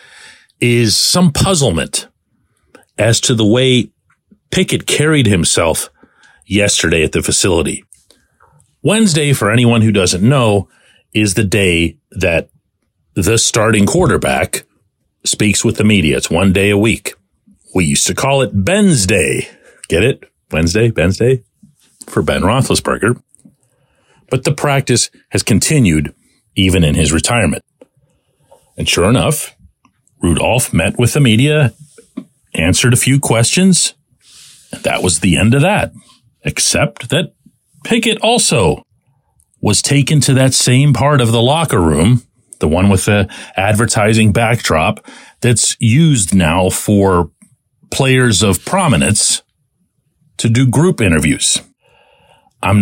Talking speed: 125 wpm